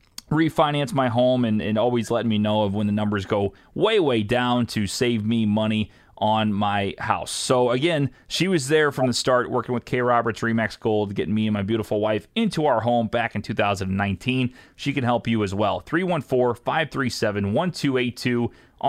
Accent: American